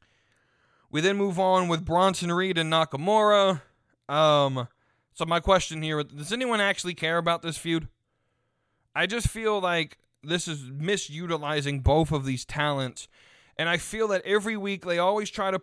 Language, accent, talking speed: English, American, 160 wpm